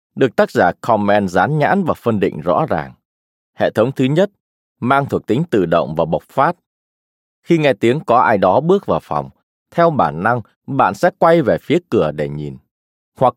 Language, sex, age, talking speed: Vietnamese, male, 20-39, 195 wpm